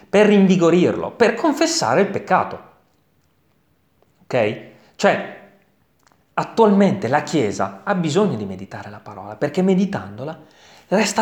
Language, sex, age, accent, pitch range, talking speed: Italian, male, 30-49, native, 130-210 Hz, 105 wpm